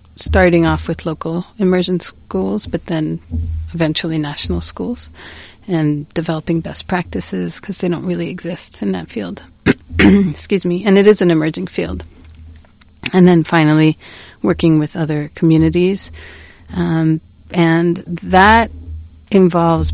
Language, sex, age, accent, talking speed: English, female, 40-59, American, 125 wpm